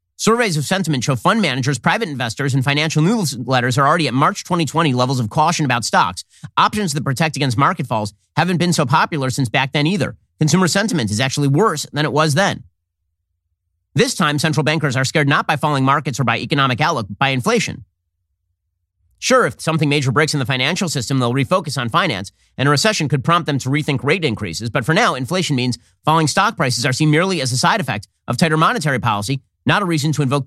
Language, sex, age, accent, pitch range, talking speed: English, male, 40-59, American, 115-160 Hz, 215 wpm